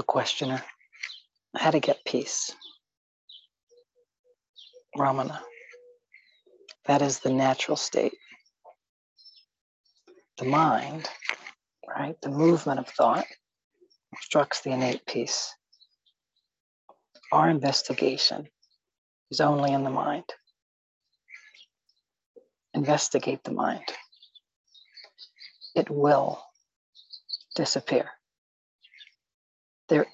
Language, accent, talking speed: English, American, 75 wpm